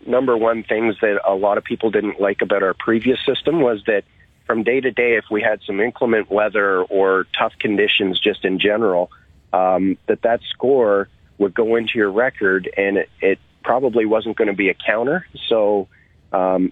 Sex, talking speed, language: male, 190 wpm, English